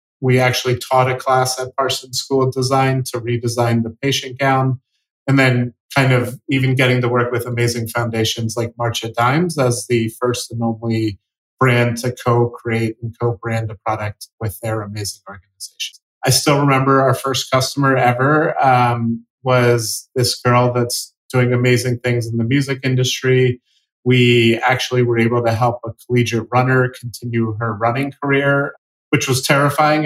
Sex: male